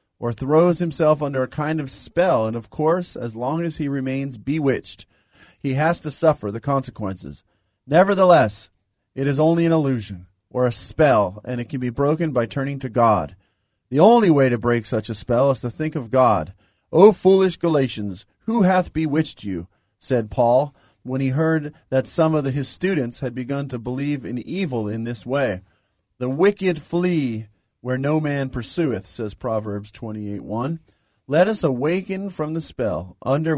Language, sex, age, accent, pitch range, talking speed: English, male, 40-59, American, 110-155 Hz, 175 wpm